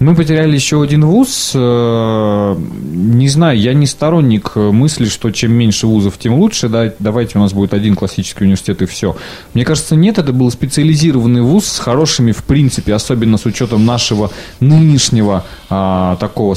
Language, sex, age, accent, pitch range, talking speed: Russian, male, 20-39, native, 105-135 Hz, 155 wpm